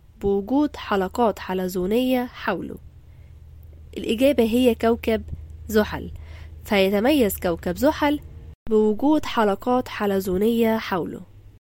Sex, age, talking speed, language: female, 10-29, 75 wpm, Arabic